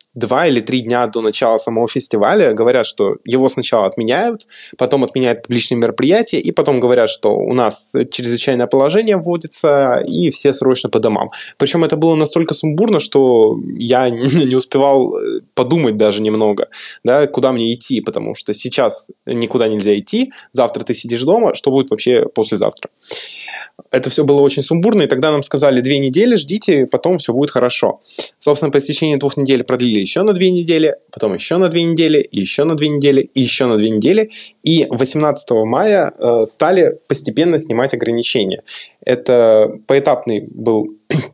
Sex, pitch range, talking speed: male, 120-155 Hz, 160 wpm